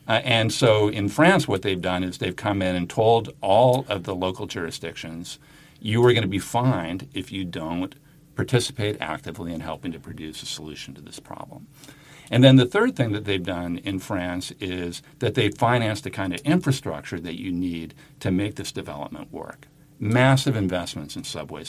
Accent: American